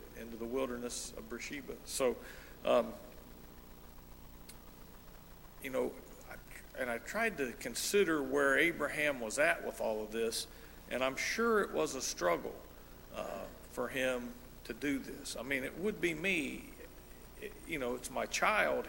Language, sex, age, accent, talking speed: English, male, 50-69, American, 145 wpm